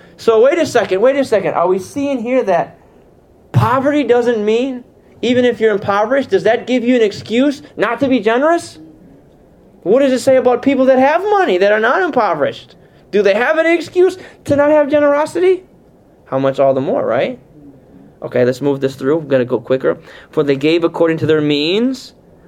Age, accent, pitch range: 20-39, American, 185-290 Hz